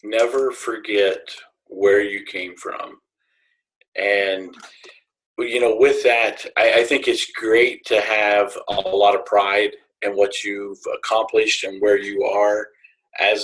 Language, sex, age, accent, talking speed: English, male, 40-59, American, 140 wpm